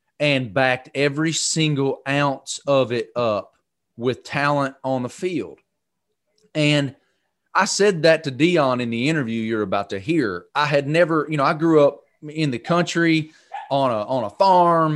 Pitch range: 125-155 Hz